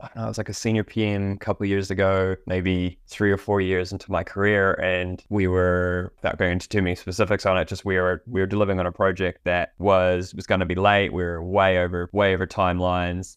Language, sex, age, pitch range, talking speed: English, male, 10-29, 90-95 Hz, 245 wpm